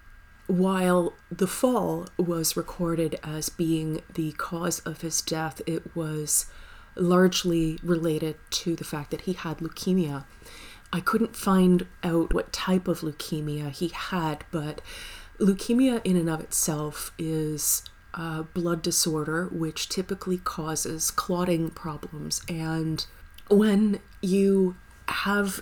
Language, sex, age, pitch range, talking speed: English, female, 30-49, 155-190 Hz, 120 wpm